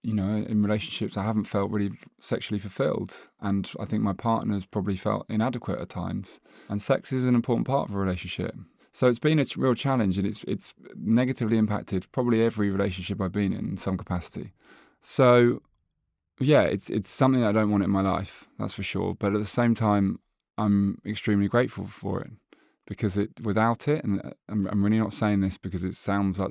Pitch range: 95-105 Hz